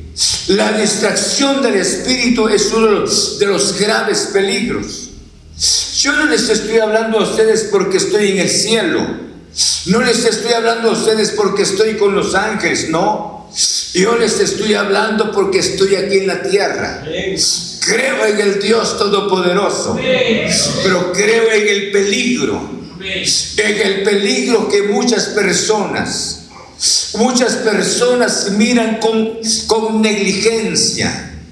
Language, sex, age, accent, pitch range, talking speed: Spanish, male, 60-79, Mexican, 200-230 Hz, 125 wpm